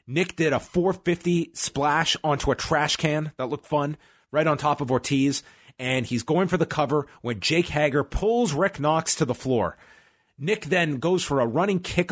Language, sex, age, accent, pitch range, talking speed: English, male, 30-49, American, 130-175 Hz, 195 wpm